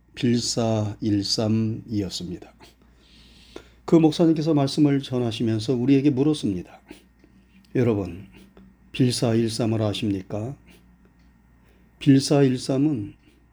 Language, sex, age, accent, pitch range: Korean, male, 40-59, native, 110-145 Hz